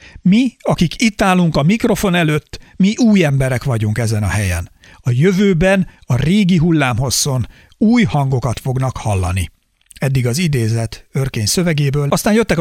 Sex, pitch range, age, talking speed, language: male, 130-190 Hz, 60-79, 145 wpm, Hungarian